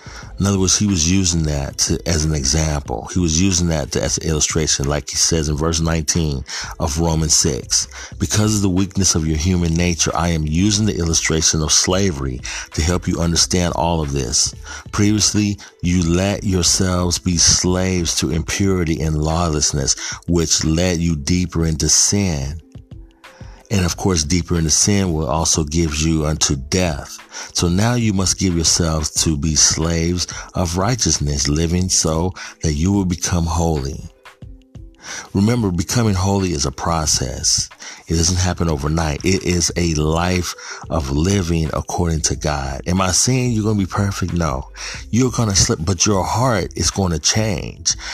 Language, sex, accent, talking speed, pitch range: English, male, American, 165 wpm, 80-100 Hz